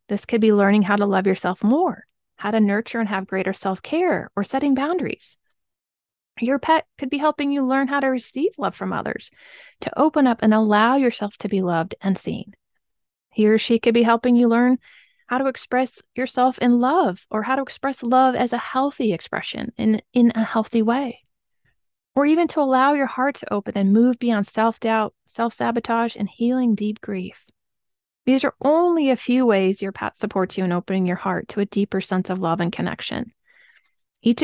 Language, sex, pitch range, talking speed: English, female, 215-265 Hz, 195 wpm